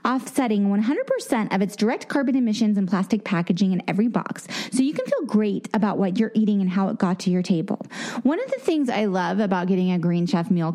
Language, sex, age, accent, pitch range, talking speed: English, female, 30-49, American, 200-260 Hz, 230 wpm